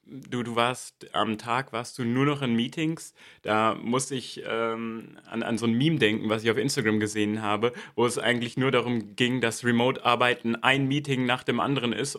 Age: 30-49